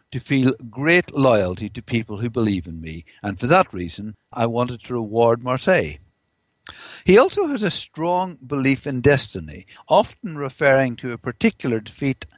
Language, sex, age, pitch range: English, male, 60-79, 110-155 Hz